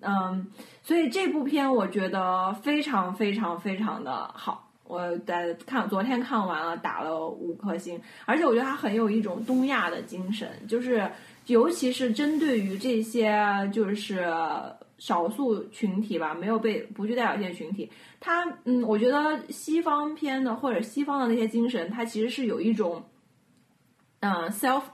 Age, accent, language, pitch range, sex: 20-39, native, Chinese, 195-265 Hz, female